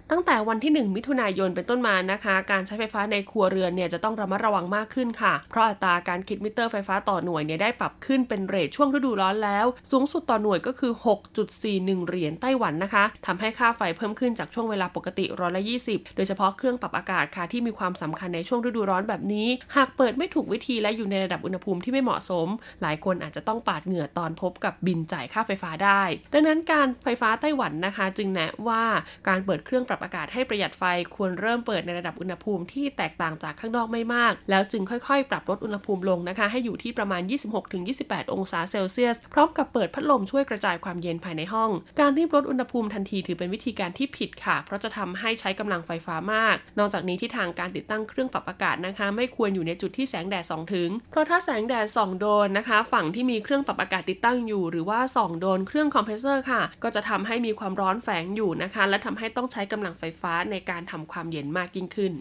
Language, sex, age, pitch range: Thai, female, 20-39, 185-235 Hz